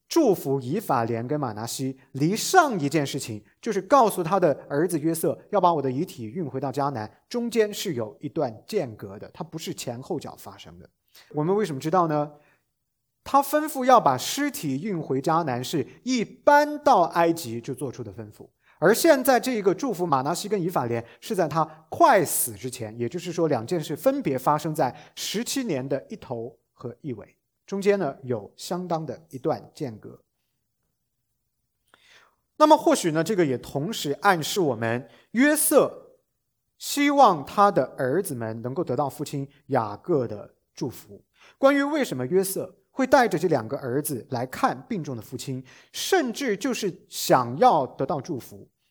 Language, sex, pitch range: English, male, 135-220 Hz